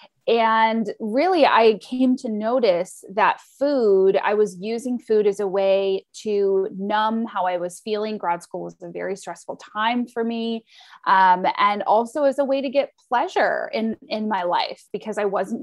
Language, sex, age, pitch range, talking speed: English, female, 20-39, 195-245 Hz, 175 wpm